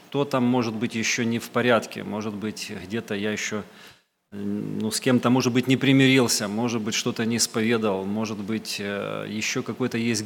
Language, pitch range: Russian, 120-145 Hz